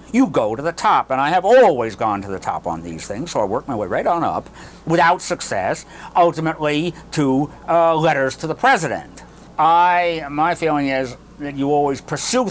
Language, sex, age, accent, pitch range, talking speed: English, male, 60-79, American, 115-160 Hz, 195 wpm